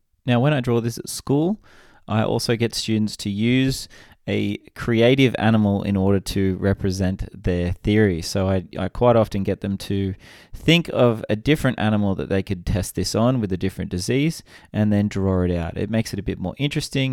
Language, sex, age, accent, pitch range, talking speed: English, male, 20-39, Australian, 95-115 Hz, 200 wpm